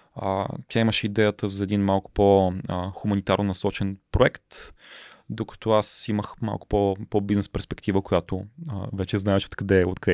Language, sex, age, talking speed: Bulgarian, male, 20-39, 140 wpm